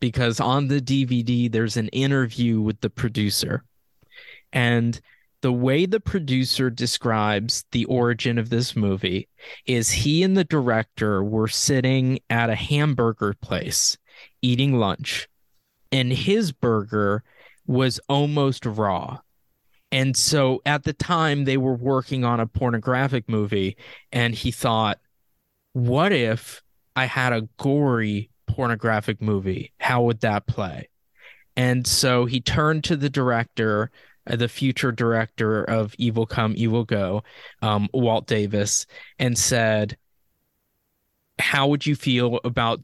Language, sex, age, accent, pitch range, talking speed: English, male, 20-39, American, 110-135 Hz, 130 wpm